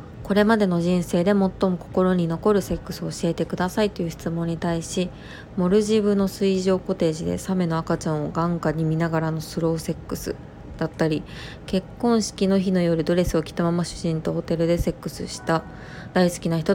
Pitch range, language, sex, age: 160-185 Hz, Japanese, female, 20-39